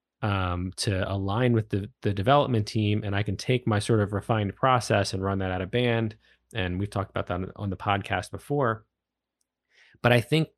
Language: English